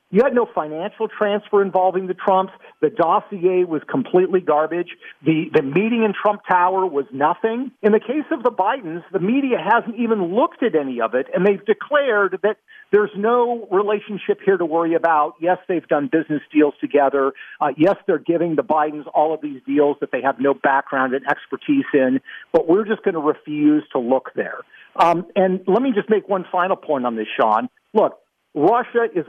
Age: 50-69